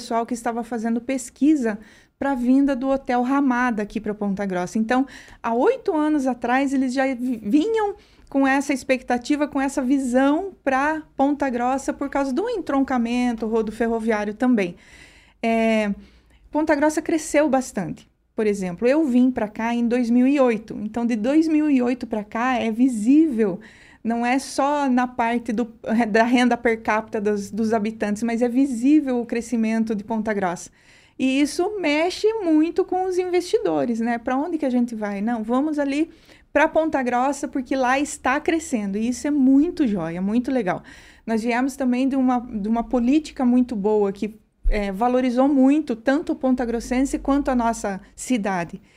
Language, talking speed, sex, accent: Portuguese, 160 wpm, female, Brazilian